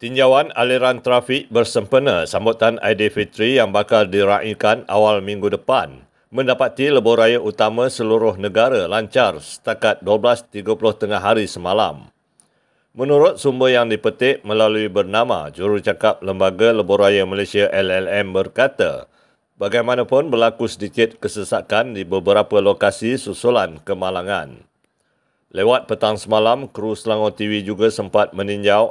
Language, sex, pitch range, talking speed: Malay, male, 100-120 Hz, 110 wpm